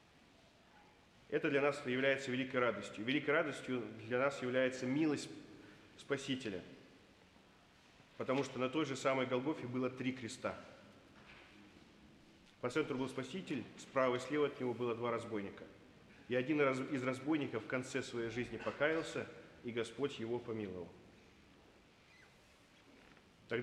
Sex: male